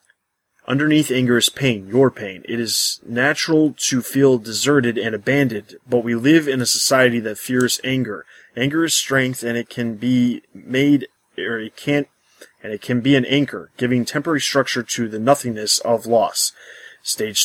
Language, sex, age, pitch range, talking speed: English, male, 20-39, 115-135 Hz, 170 wpm